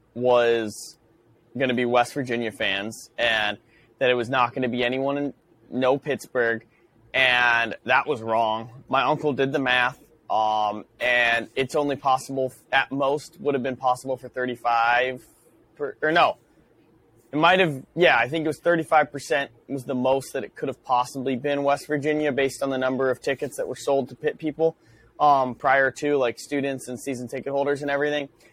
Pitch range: 120-150 Hz